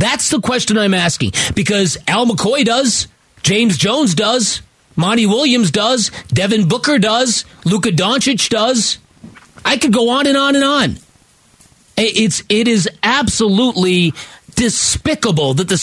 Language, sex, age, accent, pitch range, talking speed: English, male, 40-59, American, 155-225 Hz, 135 wpm